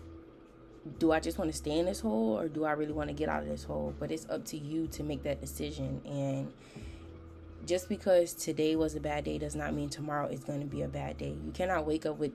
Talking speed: 260 wpm